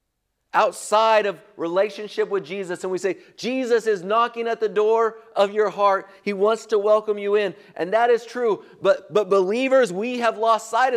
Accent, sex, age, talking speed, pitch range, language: American, male, 50-69, 185 wpm, 175-240 Hz, English